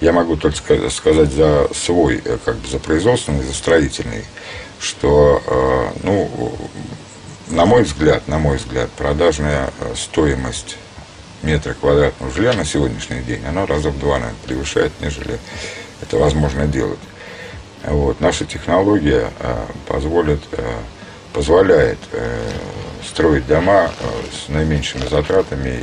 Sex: male